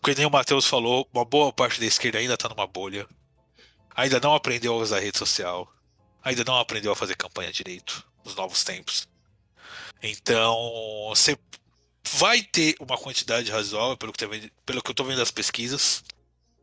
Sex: male